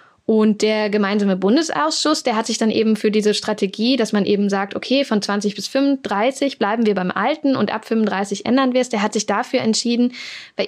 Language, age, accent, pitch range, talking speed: German, 10-29, German, 205-235 Hz, 210 wpm